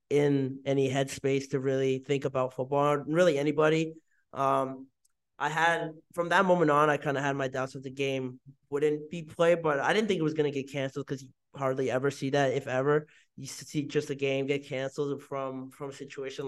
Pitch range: 135-155 Hz